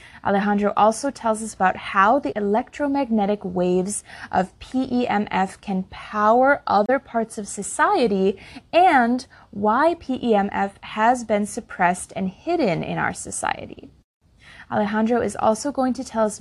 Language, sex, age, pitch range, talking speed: English, female, 20-39, 195-240 Hz, 130 wpm